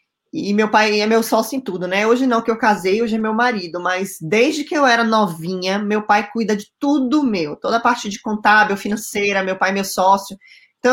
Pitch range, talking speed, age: 200-250 Hz, 230 wpm, 20-39